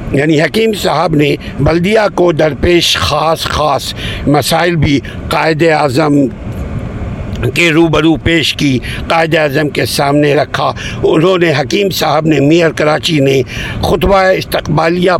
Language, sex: Urdu, male